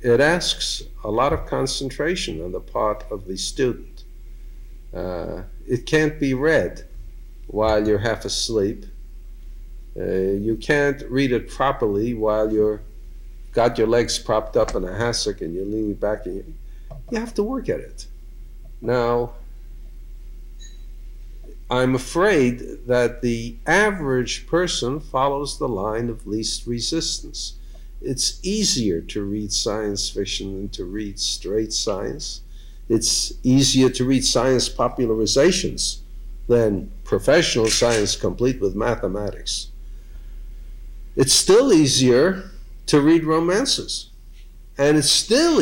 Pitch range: 110-140 Hz